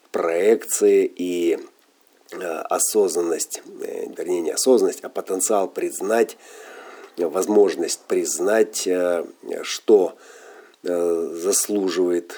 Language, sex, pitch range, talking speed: Russian, male, 370-430 Hz, 65 wpm